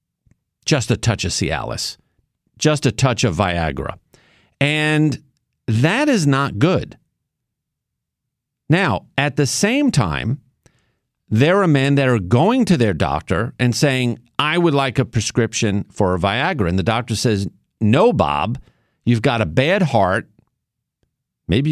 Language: English